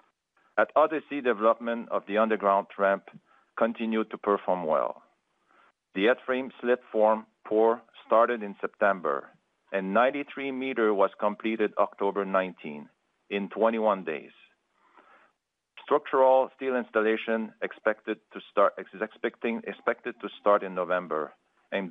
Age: 40-59